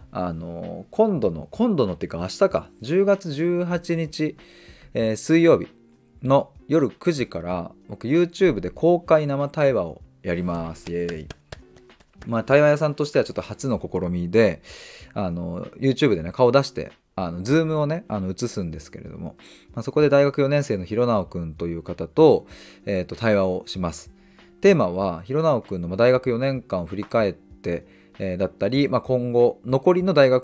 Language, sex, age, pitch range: Japanese, male, 20-39, 90-140 Hz